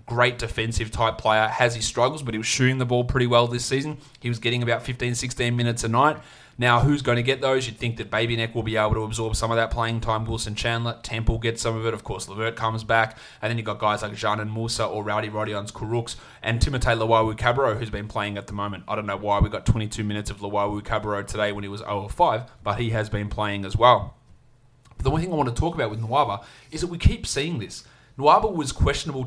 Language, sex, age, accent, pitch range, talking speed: English, male, 20-39, Australian, 110-125 Hz, 250 wpm